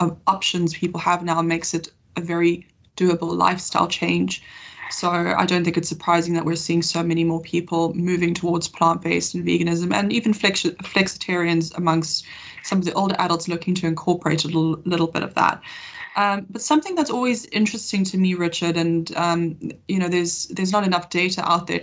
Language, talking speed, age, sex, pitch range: English, 190 wpm, 20-39, female, 165-195 Hz